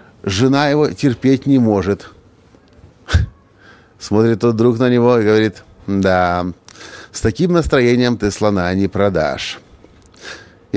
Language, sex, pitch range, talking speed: Russian, male, 105-145 Hz, 115 wpm